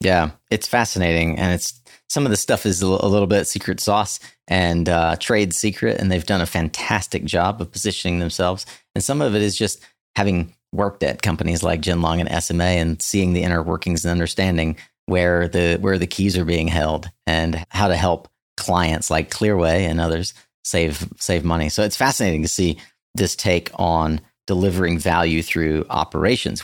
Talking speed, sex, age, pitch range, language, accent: 185 wpm, male, 30-49, 85-100 Hz, English, American